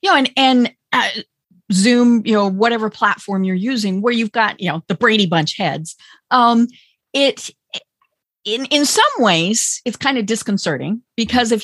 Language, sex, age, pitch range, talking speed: English, female, 40-59, 190-260 Hz, 175 wpm